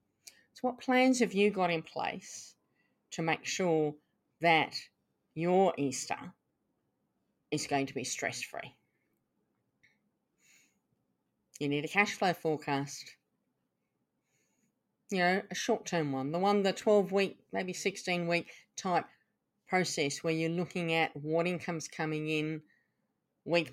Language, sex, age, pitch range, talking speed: English, female, 40-59, 155-190 Hz, 120 wpm